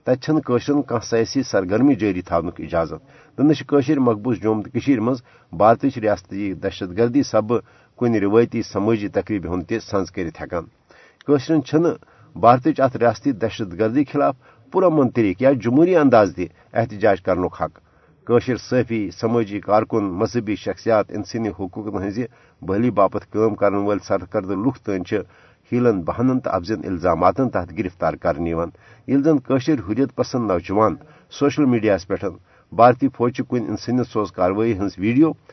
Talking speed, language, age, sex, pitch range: 125 wpm, Urdu, 60-79, male, 100-130 Hz